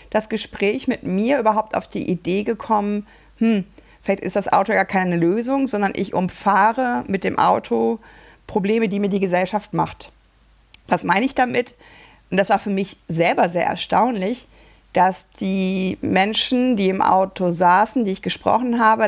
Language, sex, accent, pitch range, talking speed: German, female, German, 185-225 Hz, 165 wpm